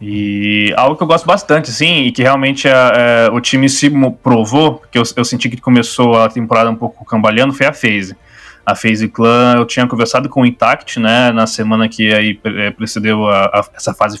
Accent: Brazilian